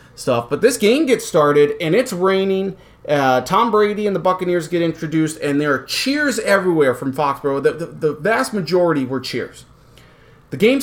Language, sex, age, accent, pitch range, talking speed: English, male, 30-49, American, 140-200 Hz, 185 wpm